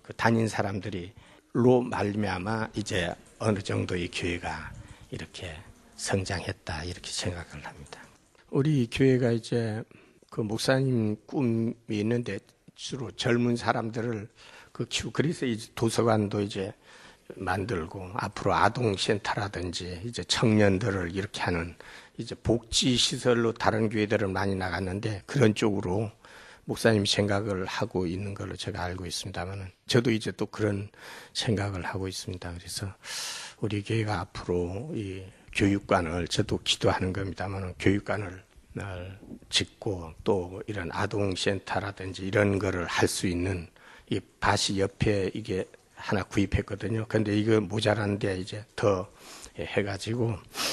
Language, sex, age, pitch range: Korean, male, 60-79, 95-110 Hz